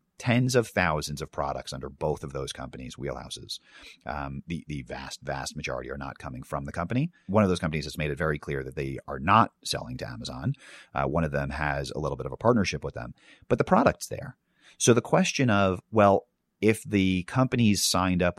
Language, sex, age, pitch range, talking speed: English, male, 30-49, 70-95 Hz, 215 wpm